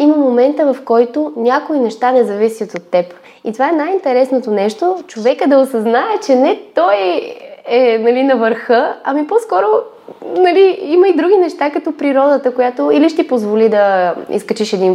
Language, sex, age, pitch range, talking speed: Bulgarian, female, 20-39, 195-250 Hz, 170 wpm